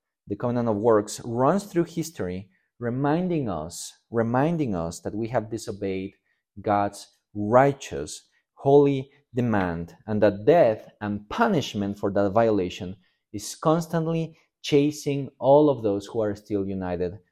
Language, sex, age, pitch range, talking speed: English, male, 30-49, 100-135 Hz, 130 wpm